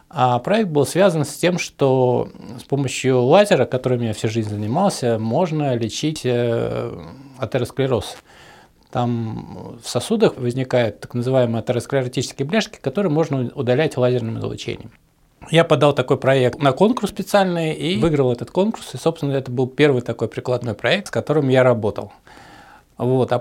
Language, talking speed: Russian, 140 wpm